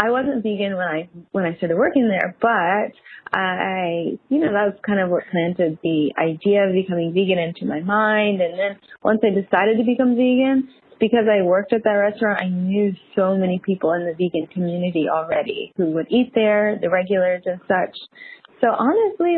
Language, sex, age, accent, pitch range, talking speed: English, female, 20-39, American, 175-220 Hz, 190 wpm